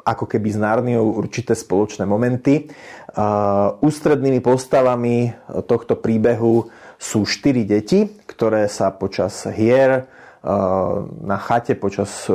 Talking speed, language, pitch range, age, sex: 100 wpm, Slovak, 100-120 Hz, 30-49, male